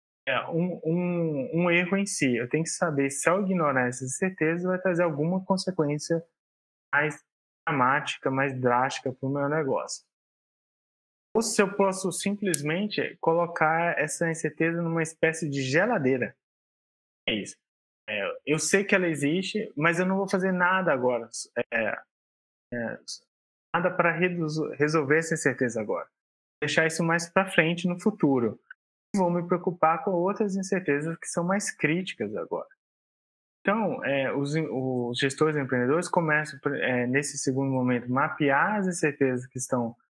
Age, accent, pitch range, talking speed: 20-39, Brazilian, 135-180 Hz, 150 wpm